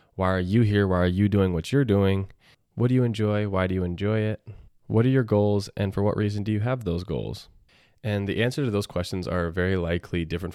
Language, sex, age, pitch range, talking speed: English, male, 20-39, 85-100 Hz, 245 wpm